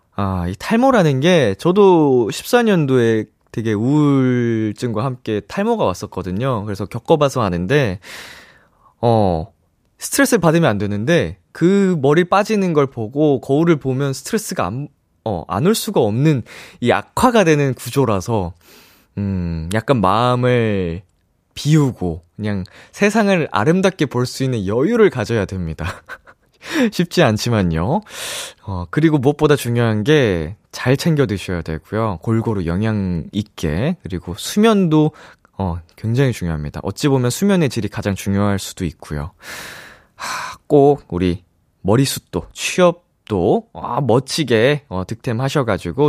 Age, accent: 20-39, native